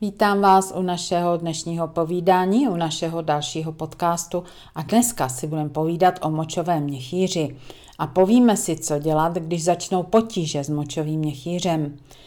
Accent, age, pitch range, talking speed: native, 40-59, 165-185 Hz, 140 wpm